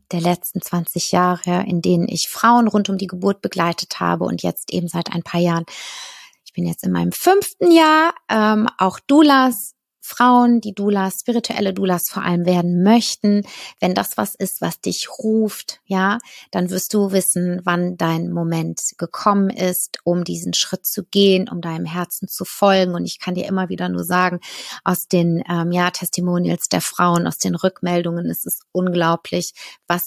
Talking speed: 180 wpm